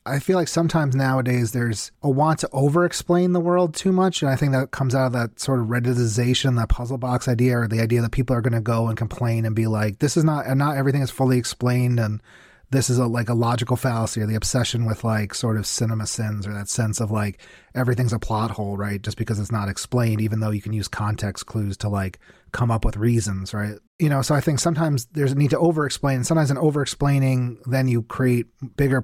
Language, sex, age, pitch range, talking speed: English, male, 30-49, 110-135 Hz, 240 wpm